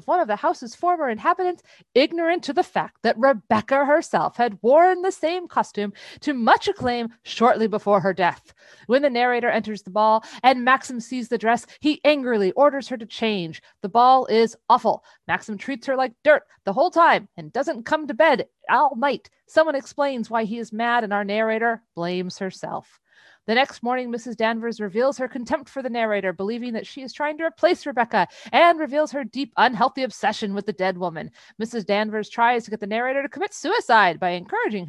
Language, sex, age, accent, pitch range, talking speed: English, female, 30-49, American, 210-305 Hz, 195 wpm